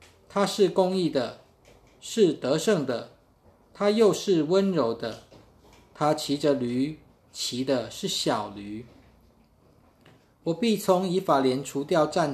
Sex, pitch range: male, 125-175 Hz